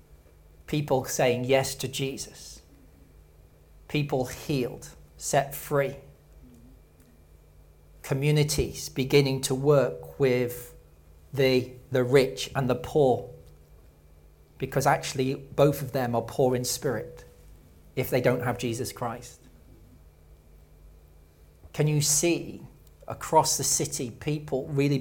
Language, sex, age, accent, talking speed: English, male, 40-59, British, 105 wpm